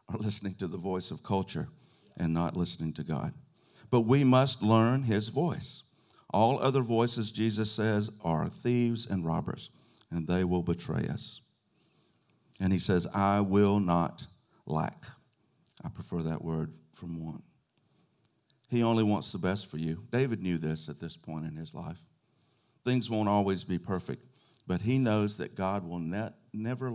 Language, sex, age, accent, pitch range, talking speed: English, male, 50-69, American, 85-125 Hz, 160 wpm